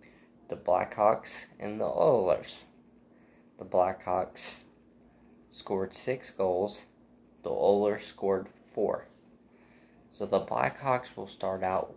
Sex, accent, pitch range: male, American, 95-115 Hz